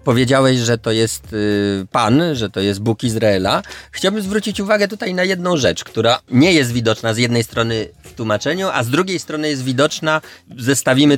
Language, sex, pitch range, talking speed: Polish, male, 110-155 Hz, 175 wpm